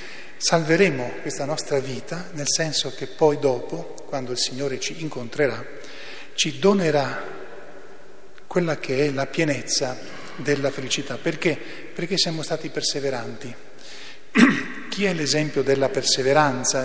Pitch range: 130-155 Hz